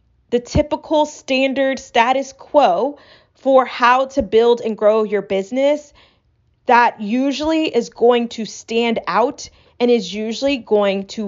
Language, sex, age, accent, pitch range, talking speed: English, female, 20-39, American, 210-270 Hz, 135 wpm